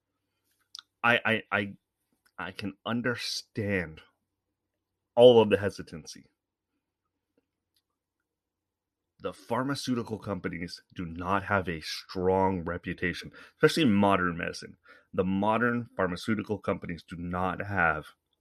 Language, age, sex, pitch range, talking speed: English, 30-49, male, 95-115 Hz, 95 wpm